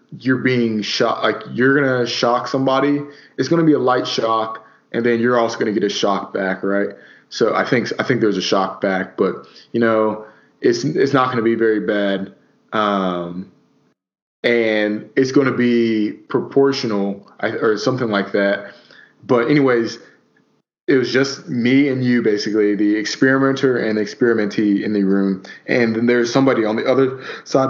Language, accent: English, American